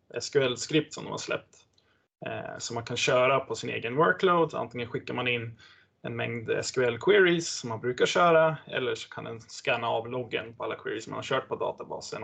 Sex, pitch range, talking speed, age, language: male, 120-155 Hz, 190 wpm, 20-39, Swedish